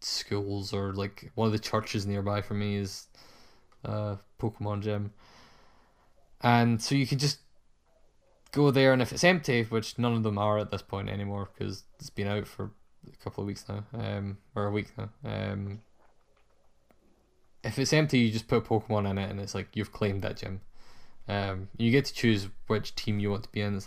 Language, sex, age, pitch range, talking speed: English, male, 10-29, 100-115 Hz, 200 wpm